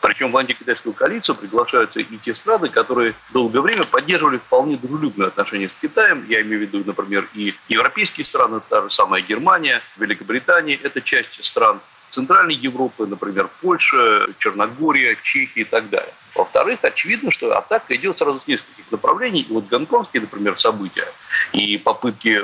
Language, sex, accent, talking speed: Russian, male, native, 155 wpm